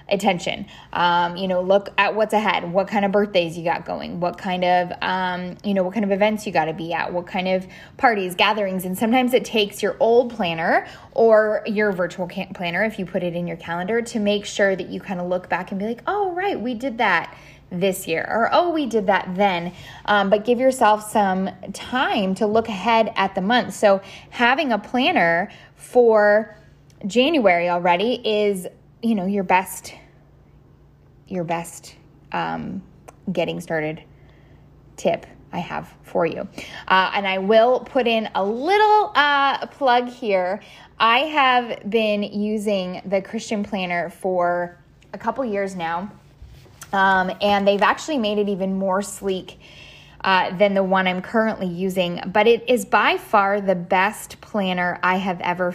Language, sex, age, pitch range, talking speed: English, female, 10-29, 180-225 Hz, 175 wpm